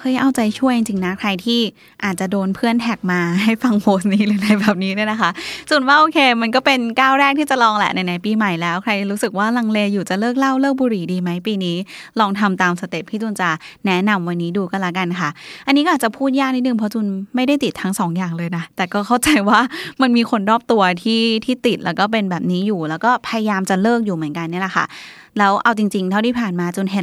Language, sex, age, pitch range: Thai, female, 20-39, 190-240 Hz